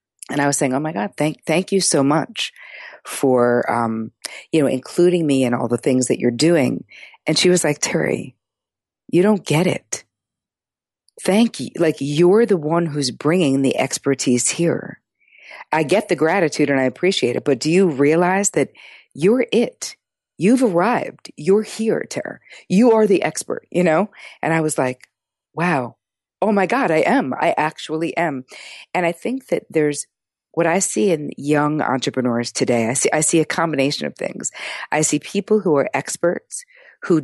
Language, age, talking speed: English, 50-69, 180 wpm